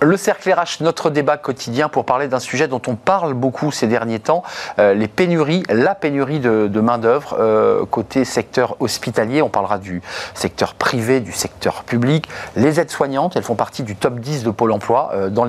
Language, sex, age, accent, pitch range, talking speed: French, male, 40-59, French, 115-150 Hz, 200 wpm